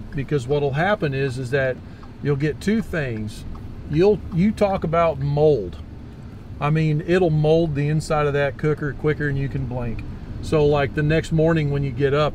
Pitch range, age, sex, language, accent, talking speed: 125-155 Hz, 40-59, male, English, American, 185 wpm